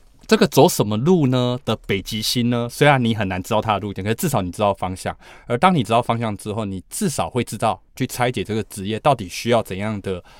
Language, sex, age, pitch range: Chinese, male, 20-39, 95-125 Hz